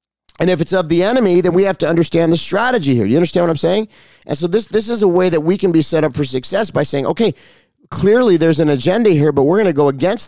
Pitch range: 105-155 Hz